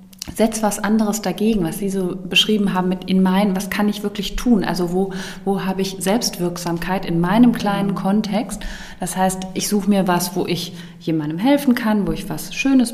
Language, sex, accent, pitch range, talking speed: German, female, German, 170-205 Hz, 195 wpm